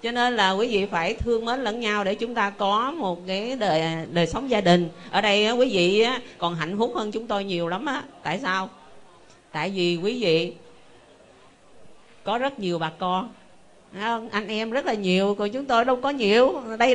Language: Vietnamese